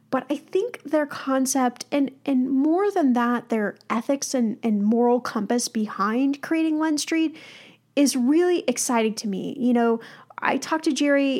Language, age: English, 10-29